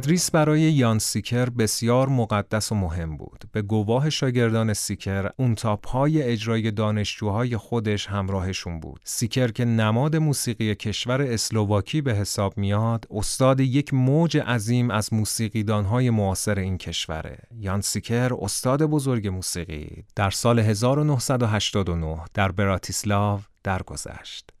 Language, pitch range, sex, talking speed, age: Persian, 100-120 Hz, male, 120 wpm, 30-49